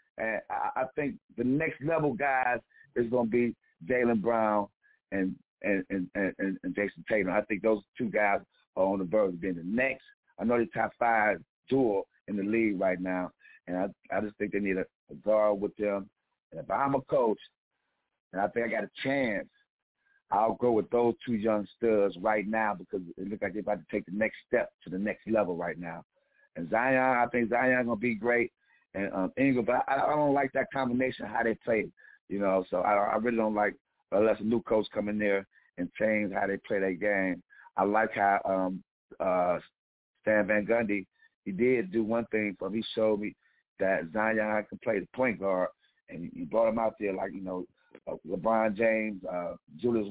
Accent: American